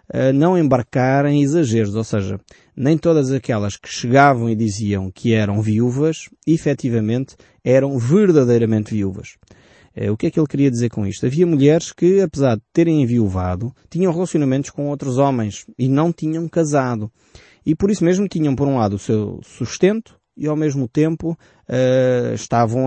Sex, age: male, 20-39